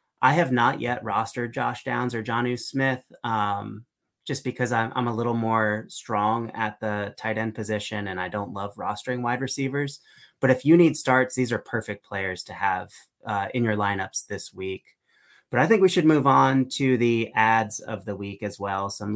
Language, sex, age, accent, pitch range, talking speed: English, male, 30-49, American, 105-135 Hz, 200 wpm